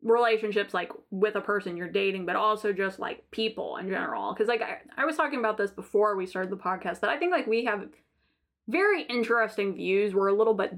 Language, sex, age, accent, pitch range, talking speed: English, female, 20-39, American, 195-240 Hz, 225 wpm